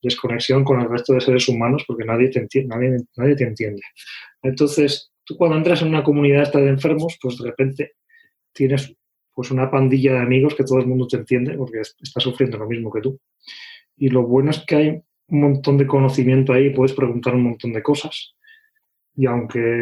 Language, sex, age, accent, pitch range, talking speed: Spanish, male, 20-39, Spanish, 120-140 Hz, 200 wpm